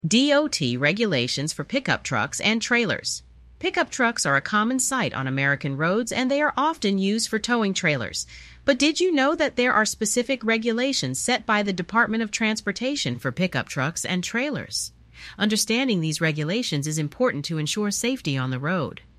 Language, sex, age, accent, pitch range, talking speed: English, female, 40-59, American, 150-230 Hz, 170 wpm